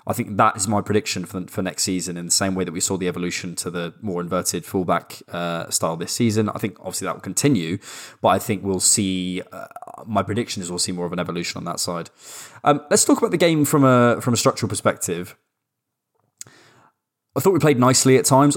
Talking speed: 225 wpm